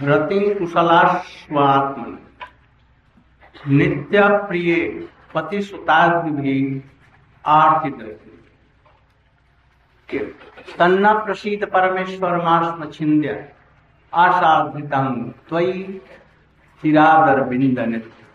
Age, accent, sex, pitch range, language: 60-79, native, male, 125-185 Hz, Hindi